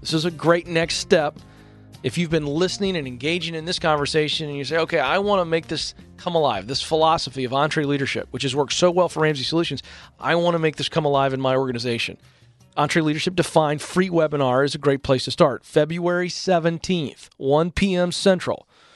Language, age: English, 40-59